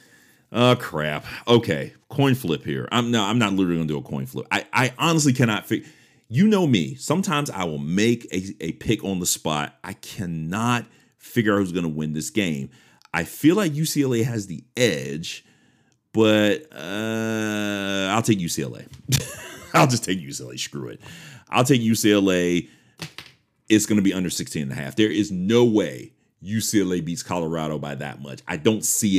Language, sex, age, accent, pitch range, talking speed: English, male, 40-59, American, 85-120 Hz, 180 wpm